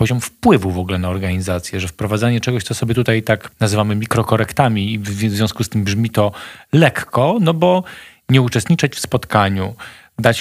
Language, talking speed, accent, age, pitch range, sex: Polish, 175 wpm, native, 40-59, 105-140 Hz, male